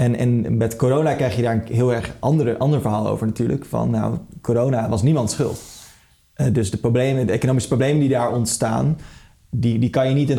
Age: 20-39